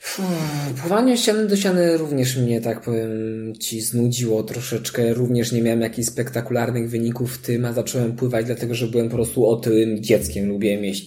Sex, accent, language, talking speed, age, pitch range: male, native, Polish, 175 wpm, 20-39, 115-145 Hz